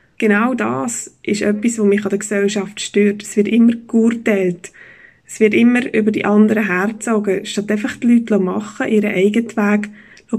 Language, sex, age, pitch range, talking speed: German, female, 20-39, 200-225 Hz, 175 wpm